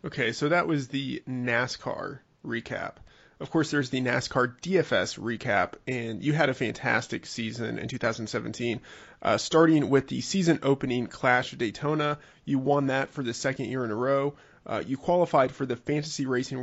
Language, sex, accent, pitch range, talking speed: English, male, American, 120-145 Hz, 175 wpm